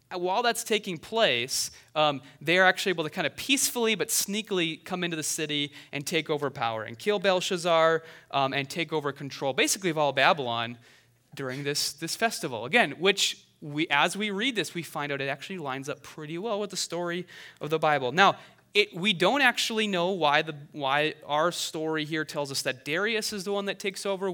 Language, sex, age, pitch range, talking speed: English, male, 30-49, 145-190 Hz, 200 wpm